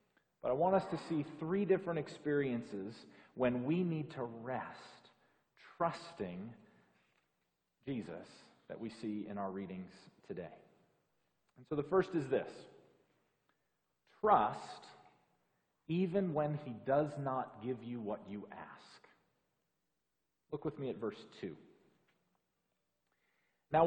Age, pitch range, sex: 40-59, 125-170 Hz, male